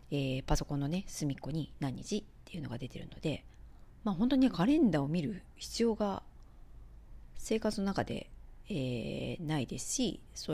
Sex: female